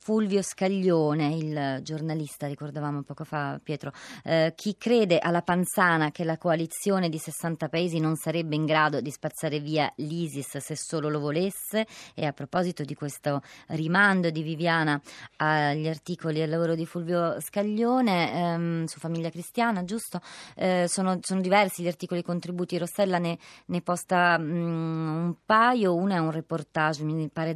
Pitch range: 155-200 Hz